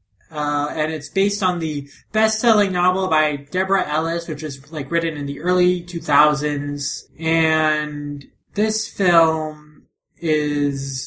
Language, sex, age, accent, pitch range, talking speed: English, male, 20-39, American, 145-170 Hz, 125 wpm